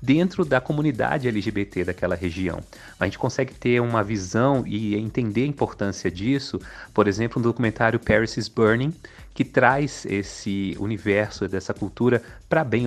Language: Portuguese